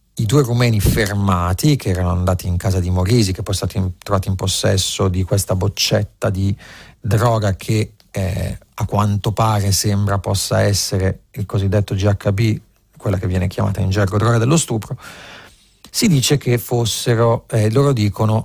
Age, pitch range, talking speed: 40-59, 100-115 Hz, 165 wpm